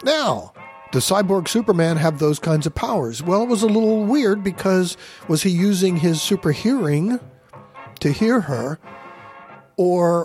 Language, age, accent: English, 50-69, American